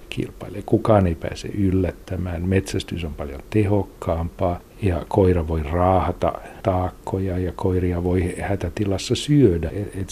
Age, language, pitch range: 60-79, Finnish, 85-105 Hz